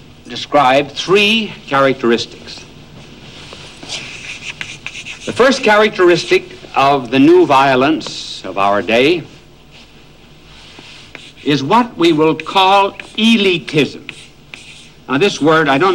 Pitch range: 120-180 Hz